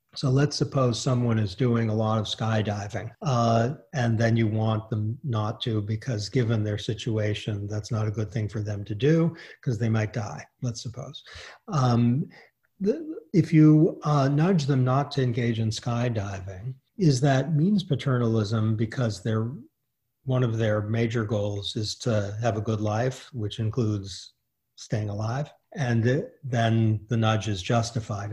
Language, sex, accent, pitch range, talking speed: English, male, American, 115-145 Hz, 155 wpm